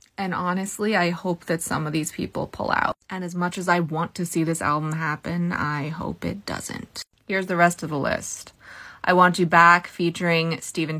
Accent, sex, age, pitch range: American, female, 20-39, 165-200 Hz